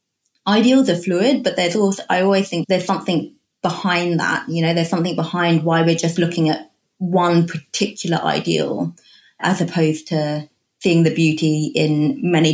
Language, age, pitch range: English, 20-39, 155-175 Hz